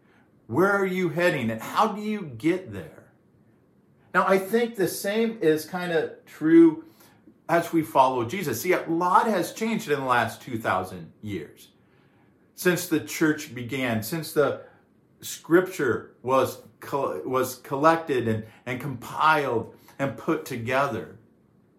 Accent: American